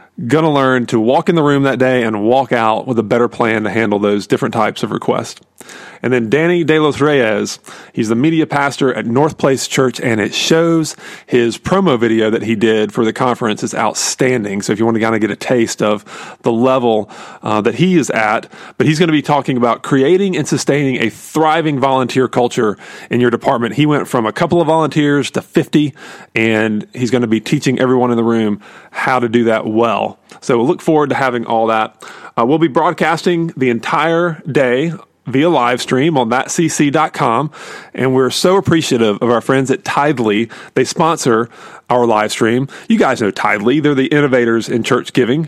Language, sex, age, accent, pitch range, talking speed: English, male, 30-49, American, 115-155 Hz, 205 wpm